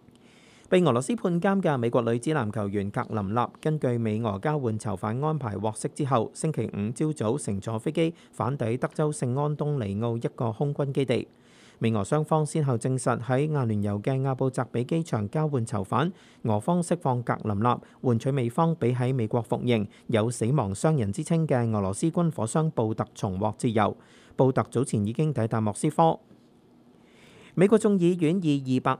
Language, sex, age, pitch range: Chinese, male, 40-59, 110-150 Hz